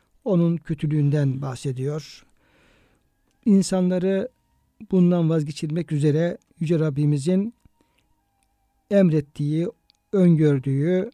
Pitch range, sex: 150-190 Hz, male